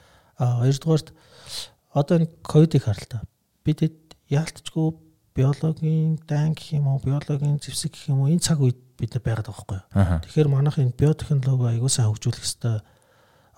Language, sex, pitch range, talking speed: English, male, 115-145 Hz, 150 wpm